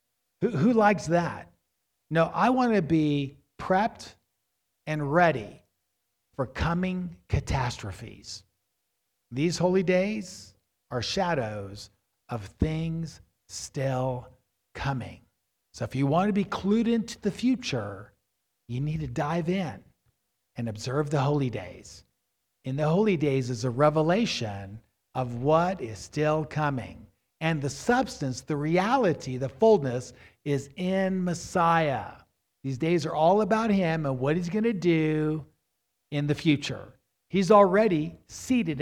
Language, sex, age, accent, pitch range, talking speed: English, male, 50-69, American, 125-180 Hz, 130 wpm